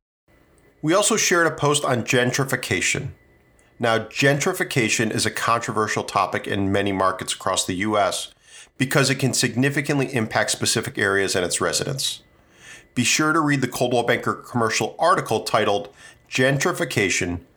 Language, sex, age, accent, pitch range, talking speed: English, male, 40-59, American, 105-135 Hz, 135 wpm